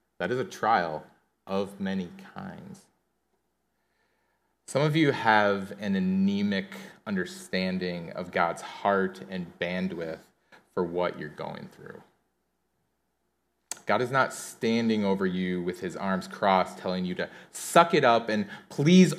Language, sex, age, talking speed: English, male, 30-49, 130 wpm